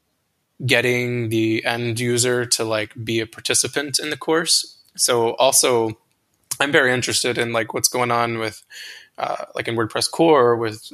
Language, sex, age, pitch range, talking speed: English, male, 20-39, 115-135 Hz, 160 wpm